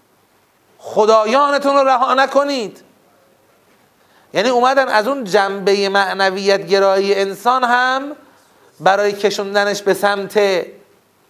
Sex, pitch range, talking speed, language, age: male, 170-240 Hz, 90 wpm, Persian, 30-49